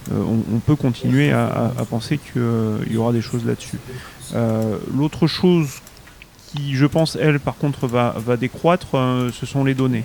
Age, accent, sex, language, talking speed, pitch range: 30-49, French, male, French, 190 wpm, 120-145 Hz